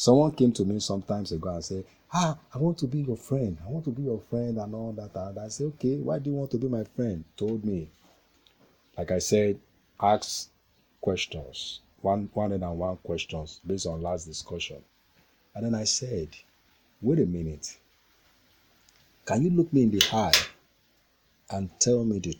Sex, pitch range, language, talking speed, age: male, 85-110 Hz, English, 185 wpm, 50-69